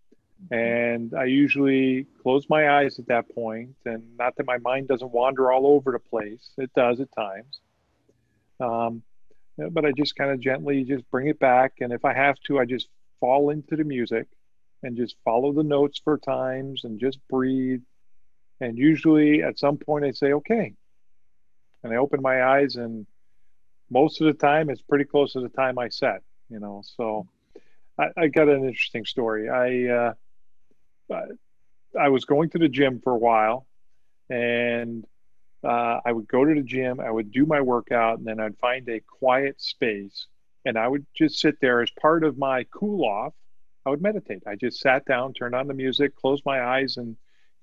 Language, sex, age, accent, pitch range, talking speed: English, male, 40-59, American, 115-140 Hz, 190 wpm